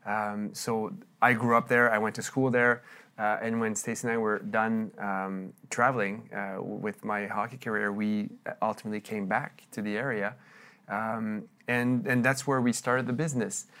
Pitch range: 110-130 Hz